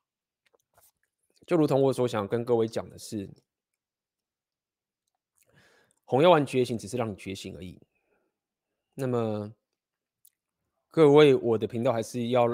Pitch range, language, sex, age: 105-135 Hz, Chinese, male, 20-39